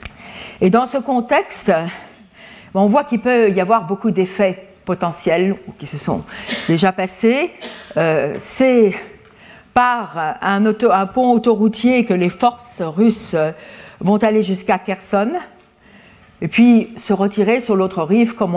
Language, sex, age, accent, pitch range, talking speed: French, female, 50-69, French, 185-230 Hz, 130 wpm